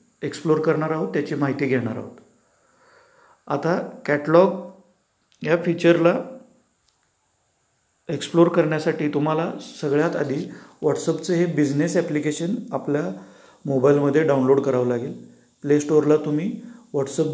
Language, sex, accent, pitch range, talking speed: Marathi, male, native, 150-180 Hz, 90 wpm